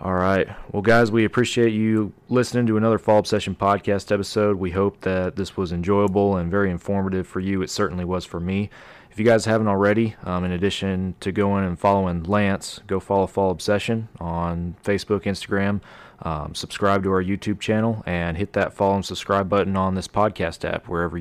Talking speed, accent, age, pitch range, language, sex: 190 wpm, American, 30-49, 90-105 Hz, English, male